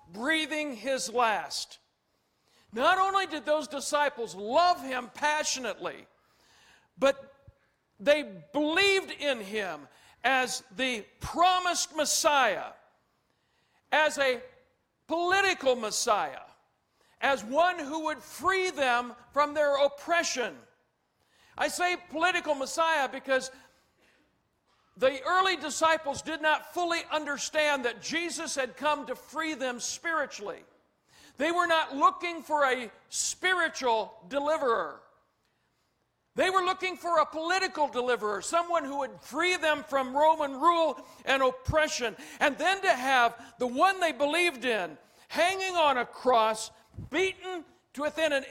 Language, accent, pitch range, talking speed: English, American, 255-335 Hz, 120 wpm